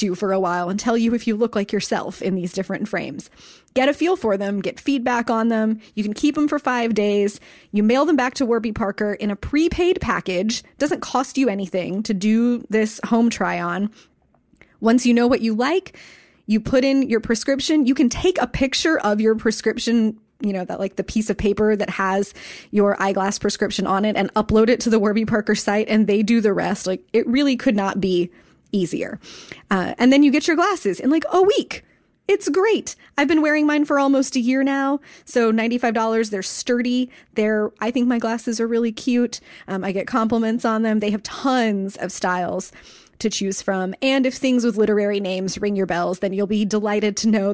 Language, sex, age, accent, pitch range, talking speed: English, female, 20-39, American, 200-250 Hz, 215 wpm